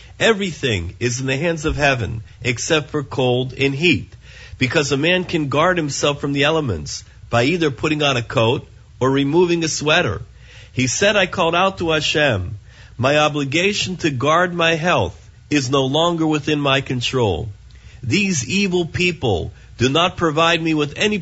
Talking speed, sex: 165 wpm, male